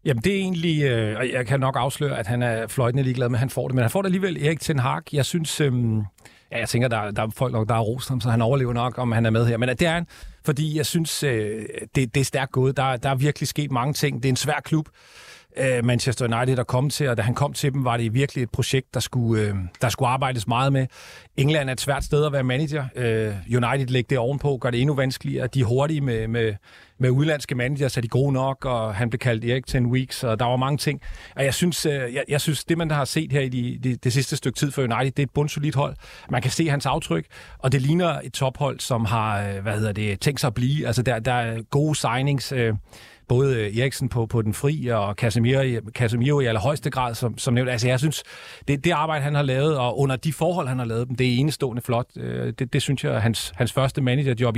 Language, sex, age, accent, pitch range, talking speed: Danish, male, 40-59, native, 120-145 Hz, 255 wpm